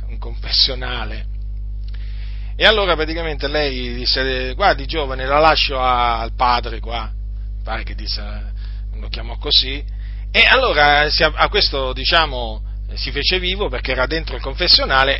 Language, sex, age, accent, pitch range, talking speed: Italian, male, 40-59, native, 100-140 Hz, 130 wpm